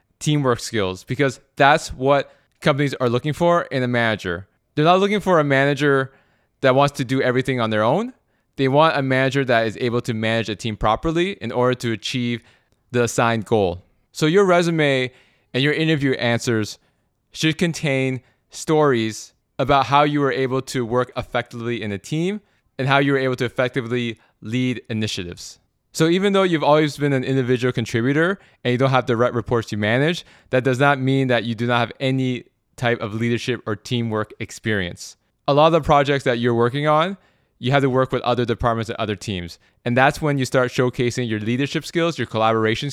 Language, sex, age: English, male, 20-39